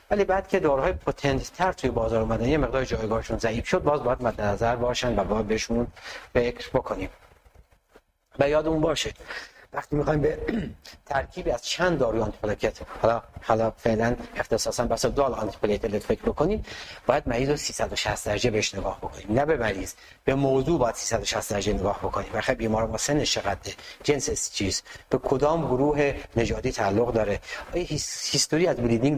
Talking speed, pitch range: 165 wpm, 110-140 Hz